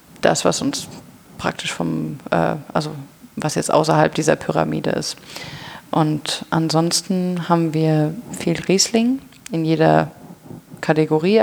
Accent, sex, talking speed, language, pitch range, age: German, female, 115 wpm, German, 160-185 Hz, 30-49